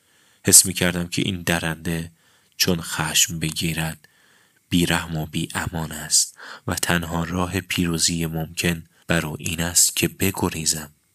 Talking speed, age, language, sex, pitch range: 130 wpm, 30-49, Persian, male, 80-95 Hz